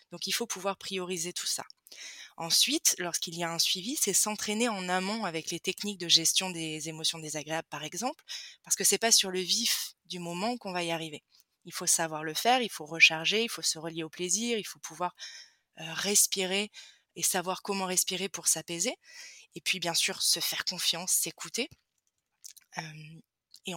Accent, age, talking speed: French, 20-39, 190 wpm